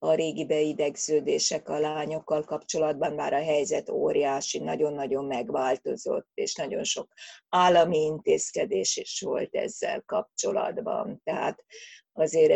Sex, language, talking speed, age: female, Hungarian, 110 wpm, 30-49